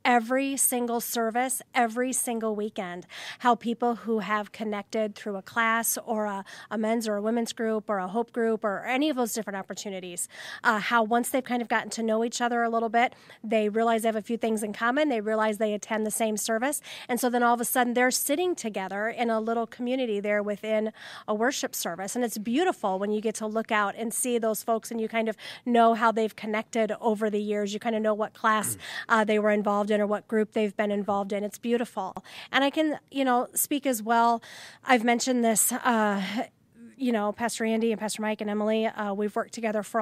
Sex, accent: female, American